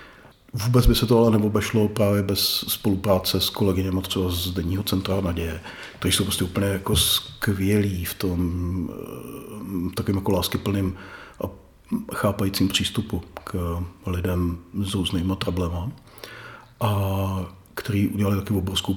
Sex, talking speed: male, 125 wpm